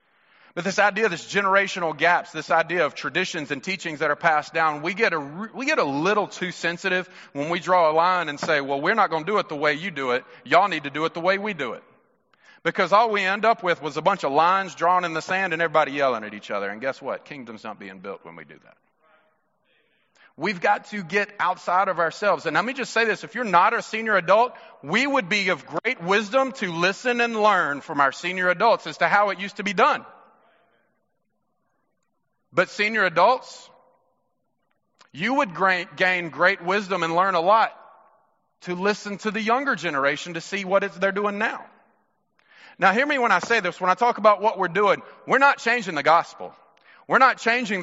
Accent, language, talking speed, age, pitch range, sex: American, English, 215 wpm, 30-49, 165-215 Hz, male